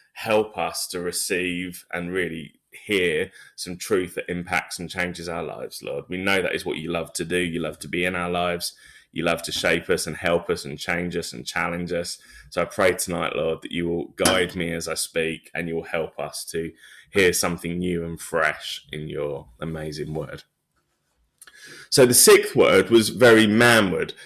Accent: British